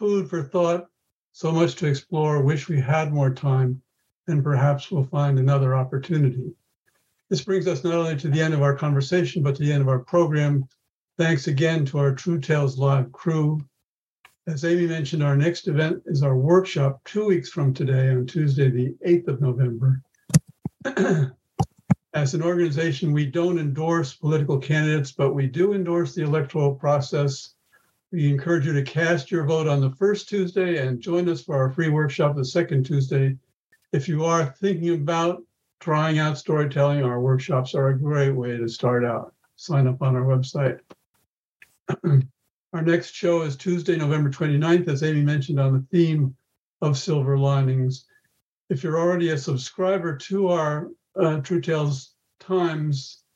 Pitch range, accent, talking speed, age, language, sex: 135-170 Hz, American, 165 wpm, 60-79, English, male